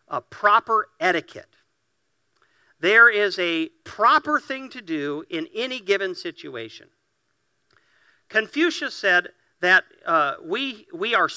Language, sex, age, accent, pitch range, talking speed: English, male, 50-69, American, 160-245 Hz, 110 wpm